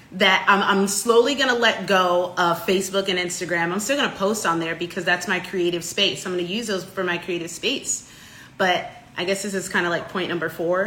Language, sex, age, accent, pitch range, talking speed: English, female, 30-49, American, 180-235 Hz, 220 wpm